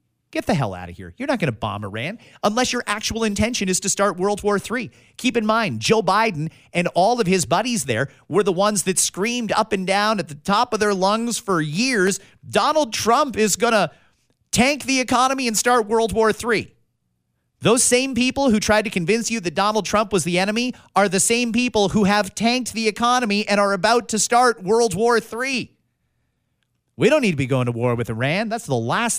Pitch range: 175-230 Hz